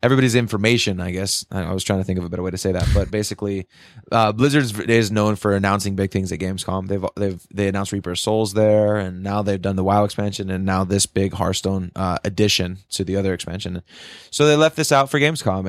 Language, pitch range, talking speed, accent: English, 95-115 Hz, 235 wpm, American